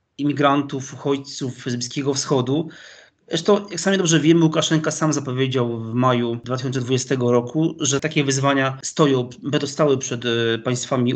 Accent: native